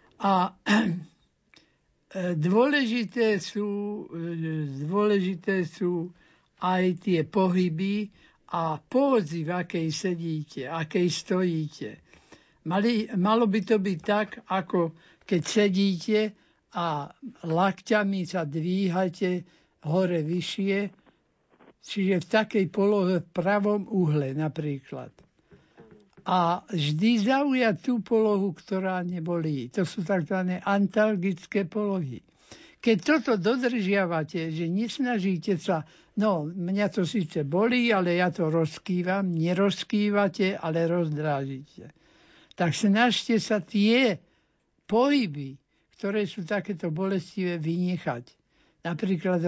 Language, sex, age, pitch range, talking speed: Slovak, male, 60-79, 170-210 Hz, 95 wpm